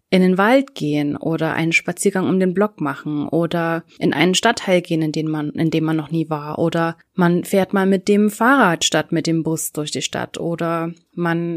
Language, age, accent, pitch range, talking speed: German, 30-49, German, 165-195 Hz, 215 wpm